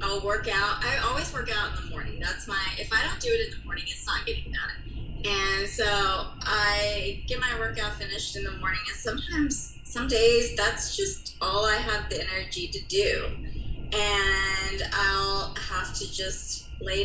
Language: English